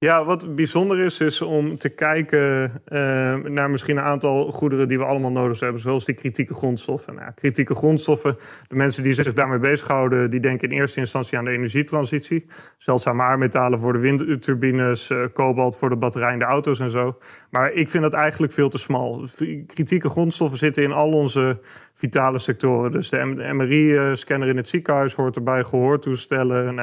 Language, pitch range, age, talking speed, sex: Dutch, 130-150 Hz, 30-49, 175 wpm, male